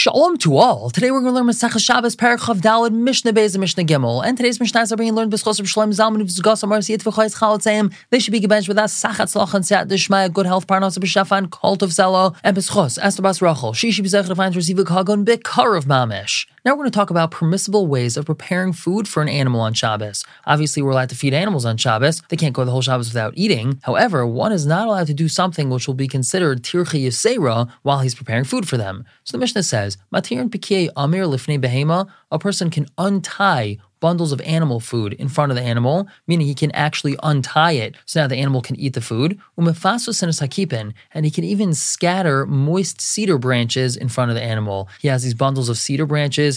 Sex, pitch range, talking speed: male, 130-195 Hz, 220 wpm